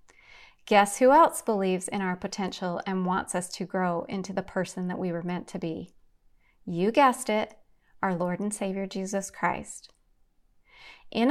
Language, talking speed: English, 165 wpm